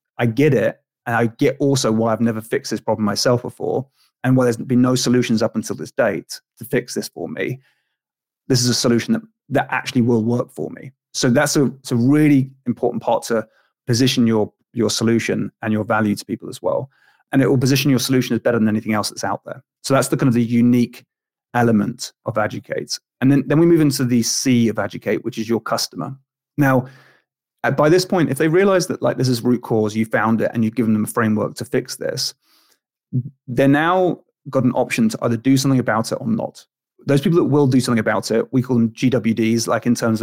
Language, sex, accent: English, male, British